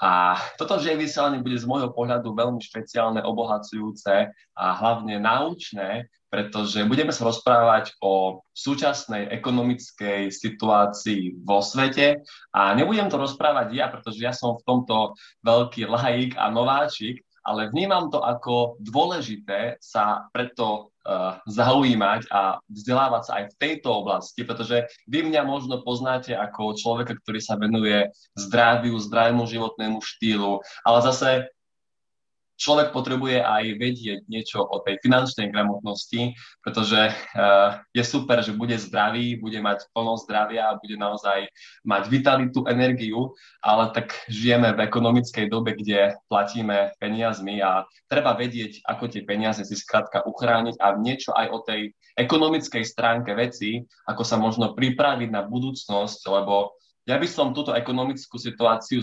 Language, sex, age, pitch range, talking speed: Slovak, male, 20-39, 105-125 Hz, 135 wpm